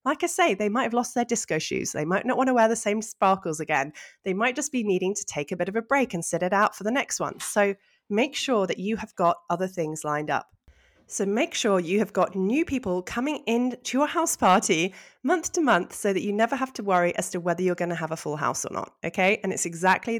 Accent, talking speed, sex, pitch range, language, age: British, 270 wpm, female, 180-250 Hz, English, 20-39